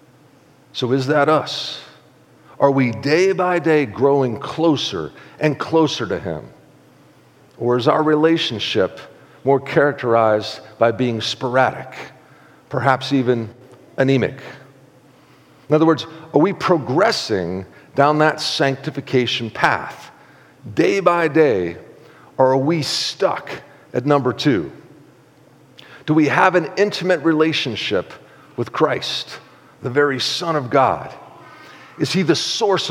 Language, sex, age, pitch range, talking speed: English, male, 50-69, 130-165 Hz, 115 wpm